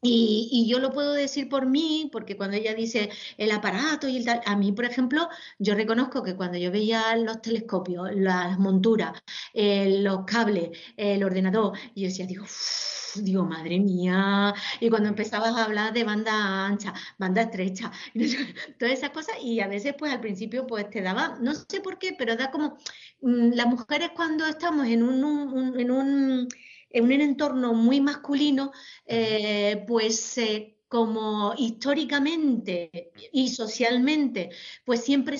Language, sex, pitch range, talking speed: Spanish, female, 205-265 Hz, 160 wpm